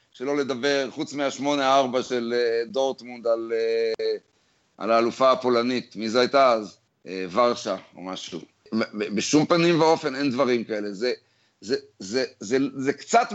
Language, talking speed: Hebrew, 165 wpm